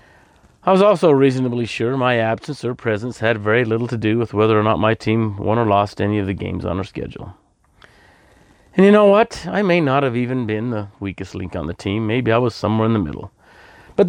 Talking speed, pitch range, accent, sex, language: 230 wpm, 105-135 Hz, American, male, English